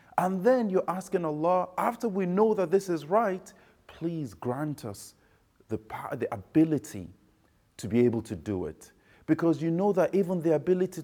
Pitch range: 155-195 Hz